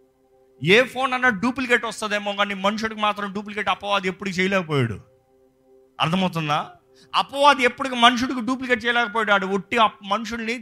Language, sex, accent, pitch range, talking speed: Telugu, male, native, 170-245 Hz, 120 wpm